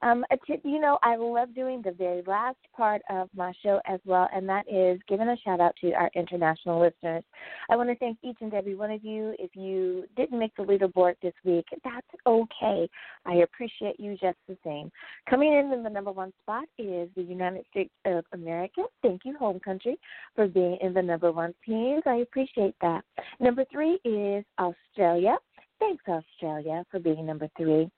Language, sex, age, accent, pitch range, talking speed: English, female, 30-49, American, 185-265 Hz, 190 wpm